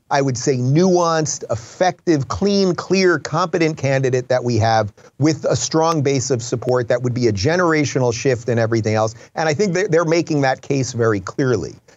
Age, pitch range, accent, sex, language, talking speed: 30-49, 120-170 Hz, American, male, English, 180 wpm